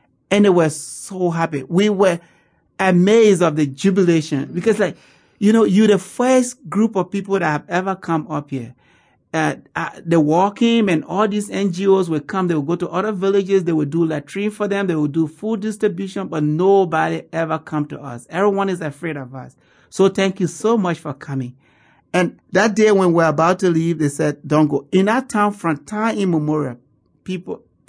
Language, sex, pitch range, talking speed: English, male, 150-195 Hz, 200 wpm